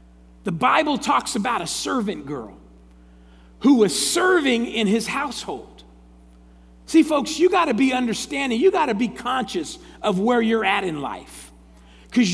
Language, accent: English, American